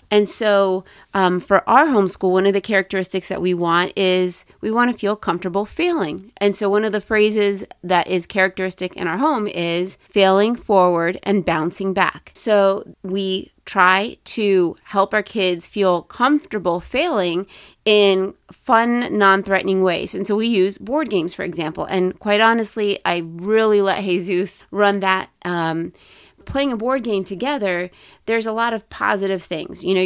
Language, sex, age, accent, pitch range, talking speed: English, female, 30-49, American, 185-210 Hz, 165 wpm